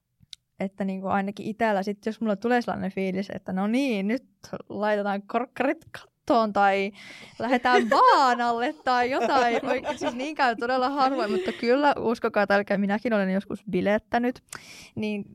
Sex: female